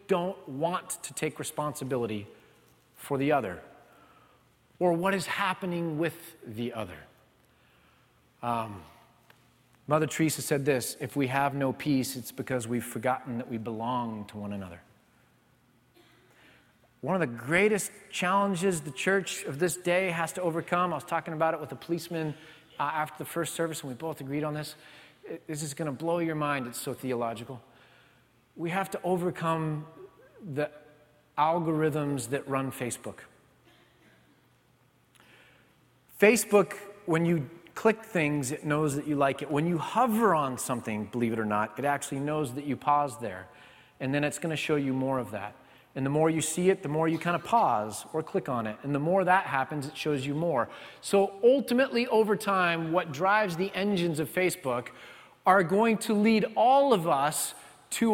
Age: 30-49